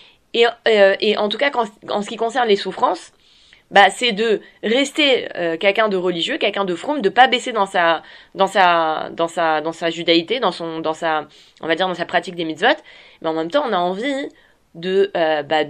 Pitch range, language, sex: 180-225 Hz, French, female